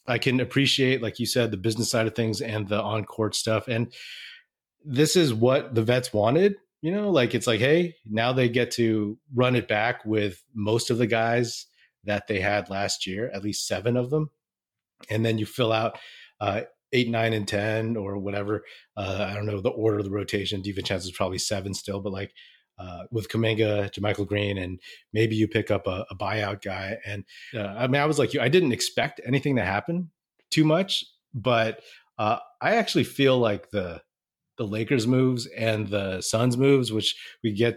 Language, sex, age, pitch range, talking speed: English, male, 30-49, 105-125 Hz, 200 wpm